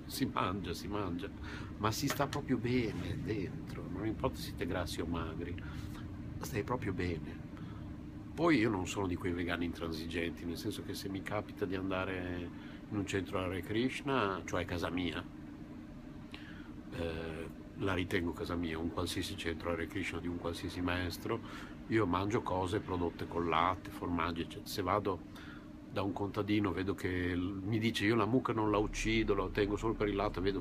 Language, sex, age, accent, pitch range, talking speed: Italian, male, 50-69, native, 85-105 Hz, 175 wpm